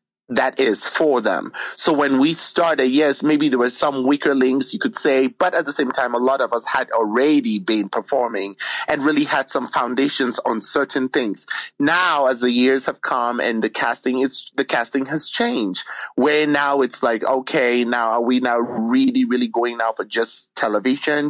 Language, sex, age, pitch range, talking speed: English, male, 30-49, 130-190 Hz, 195 wpm